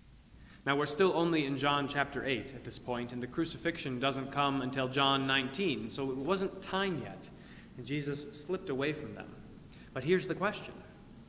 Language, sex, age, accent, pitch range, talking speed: English, male, 30-49, American, 130-165 Hz, 180 wpm